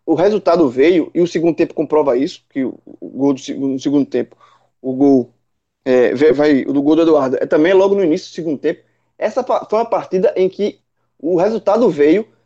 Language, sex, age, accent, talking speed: Portuguese, male, 20-39, Brazilian, 205 wpm